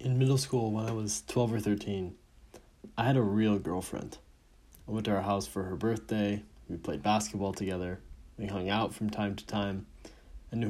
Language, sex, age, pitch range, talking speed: English, male, 20-39, 85-110 Hz, 195 wpm